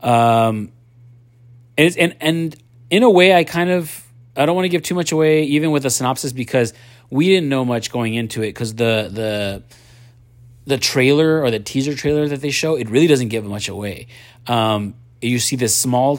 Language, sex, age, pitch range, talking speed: English, male, 30-49, 110-125 Hz, 195 wpm